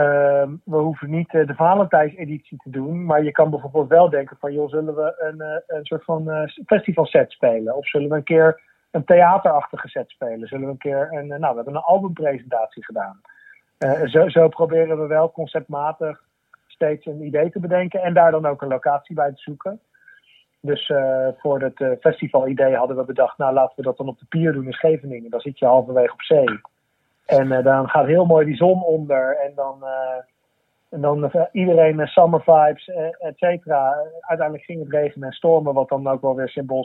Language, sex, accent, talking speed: English, male, Dutch, 210 wpm